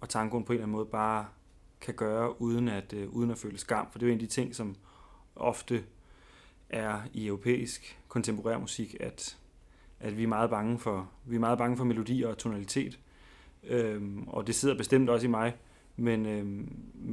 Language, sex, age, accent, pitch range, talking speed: Danish, male, 30-49, native, 105-120 Hz, 185 wpm